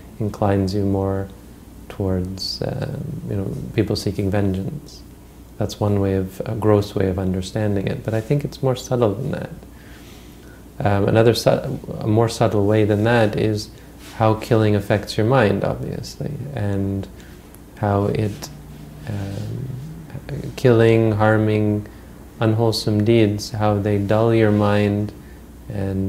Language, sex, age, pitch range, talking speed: English, male, 30-49, 95-115 Hz, 135 wpm